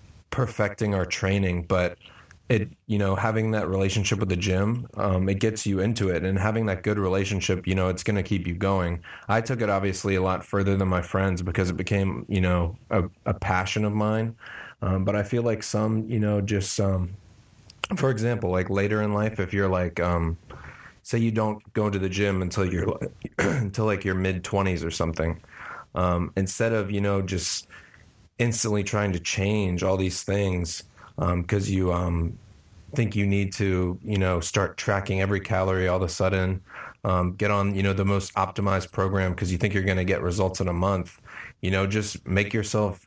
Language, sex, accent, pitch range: English, male, American, 90-105 Hz